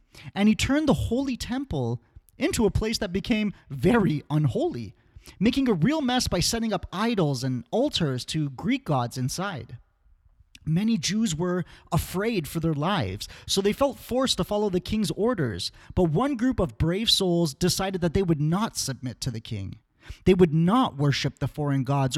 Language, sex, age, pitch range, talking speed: English, male, 30-49, 130-210 Hz, 175 wpm